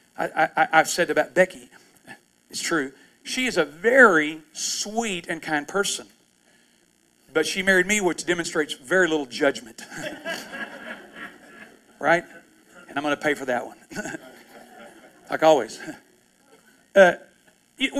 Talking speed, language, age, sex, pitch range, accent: 125 wpm, English, 40-59, male, 165-220 Hz, American